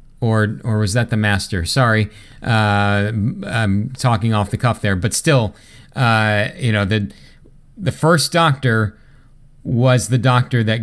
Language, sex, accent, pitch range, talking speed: English, male, American, 105-135 Hz, 150 wpm